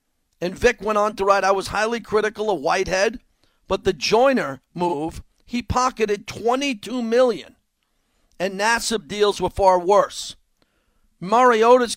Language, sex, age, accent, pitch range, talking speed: English, male, 50-69, American, 180-215 Hz, 135 wpm